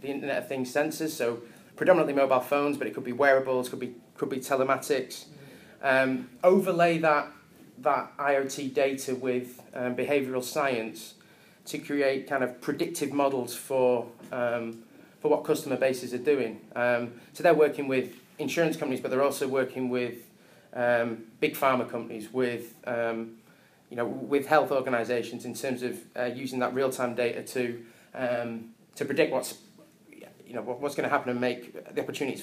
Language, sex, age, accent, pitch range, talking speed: English, male, 30-49, British, 125-145 Hz, 165 wpm